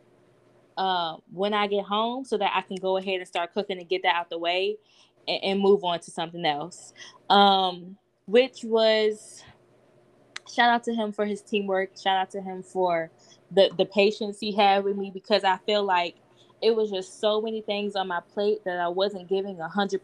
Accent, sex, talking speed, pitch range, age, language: American, female, 205 wpm, 180-215 Hz, 10-29, English